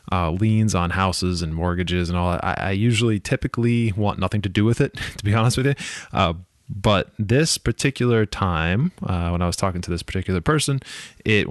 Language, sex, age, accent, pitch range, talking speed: English, male, 20-39, American, 95-120 Hz, 205 wpm